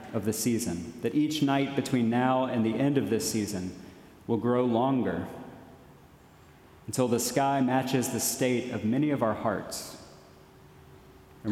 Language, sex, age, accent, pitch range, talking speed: English, male, 40-59, American, 110-130 Hz, 150 wpm